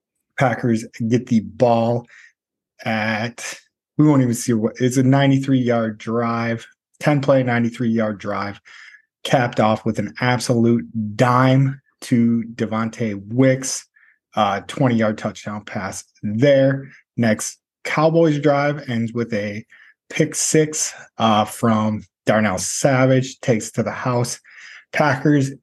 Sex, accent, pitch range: male, American, 110-130 Hz